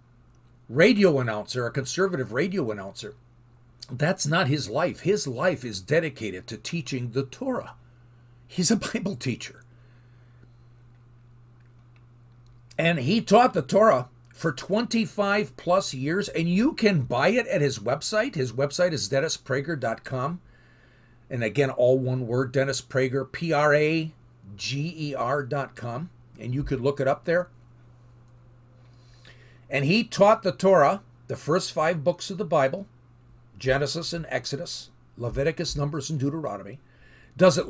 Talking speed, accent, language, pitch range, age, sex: 125 wpm, American, English, 120-185 Hz, 50-69, male